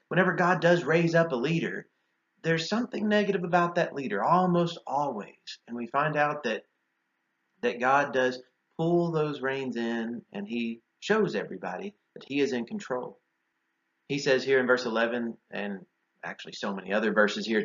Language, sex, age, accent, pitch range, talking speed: English, male, 30-49, American, 100-165 Hz, 165 wpm